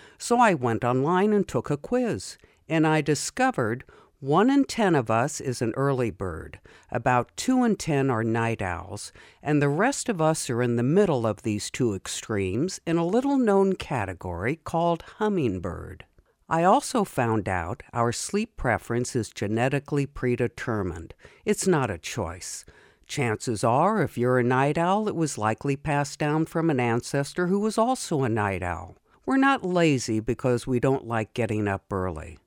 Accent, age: American, 60-79